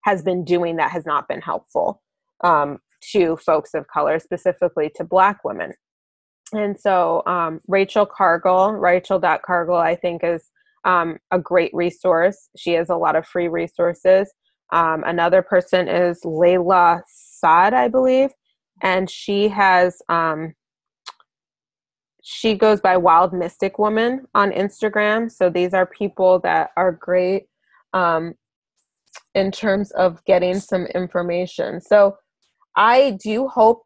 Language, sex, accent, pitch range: English, female, American, 175-195 Hz